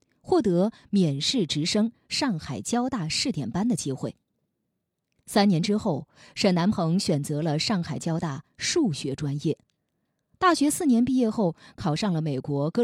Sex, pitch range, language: female, 150-225 Hz, Chinese